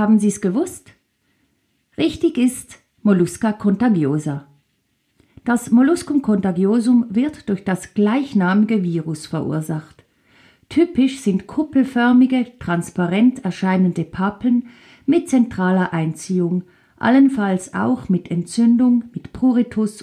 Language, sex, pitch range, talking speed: German, female, 175-245 Hz, 95 wpm